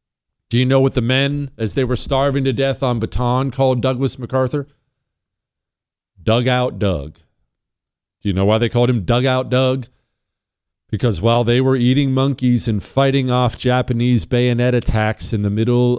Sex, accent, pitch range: male, American, 110-130 Hz